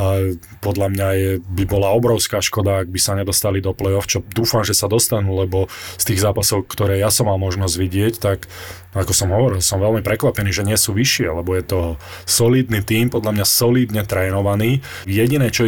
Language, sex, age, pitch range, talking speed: Slovak, male, 20-39, 95-110 Hz, 195 wpm